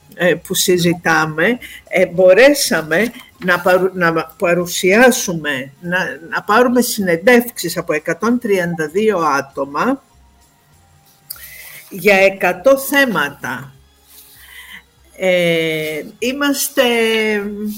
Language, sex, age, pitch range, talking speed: Greek, female, 50-69, 170-240 Hz, 55 wpm